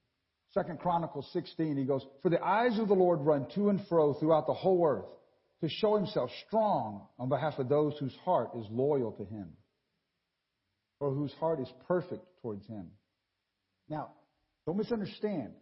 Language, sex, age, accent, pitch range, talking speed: English, male, 50-69, American, 130-180 Hz, 165 wpm